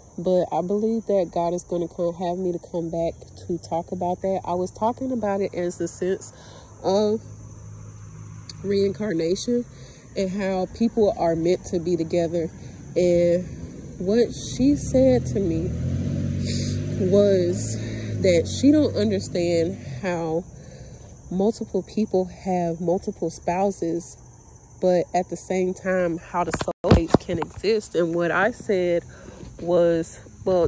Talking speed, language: 135 wpm, English